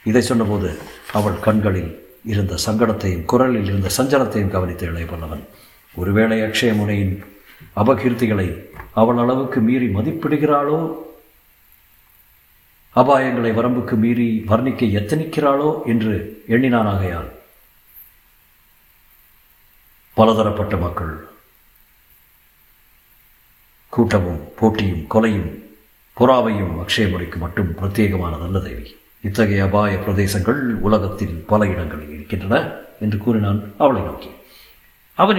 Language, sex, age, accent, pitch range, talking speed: Tamil, male, 50-69, native, 95-125 Hz, 85 wpm